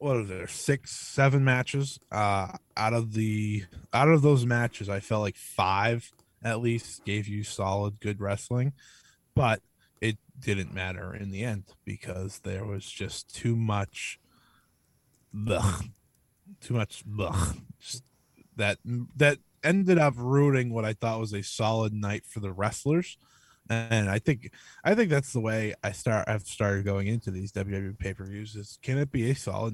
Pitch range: 100-125 Hz